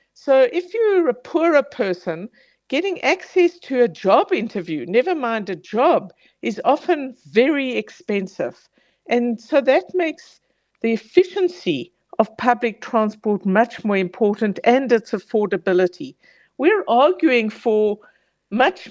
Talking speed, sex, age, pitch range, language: 125 wpm, female, 60-79, 205-275 Hz, English